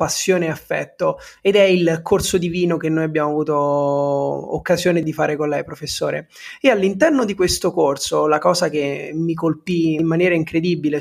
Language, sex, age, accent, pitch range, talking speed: Italian, male, 20-39, native, 155-185 Hz, 175 wpm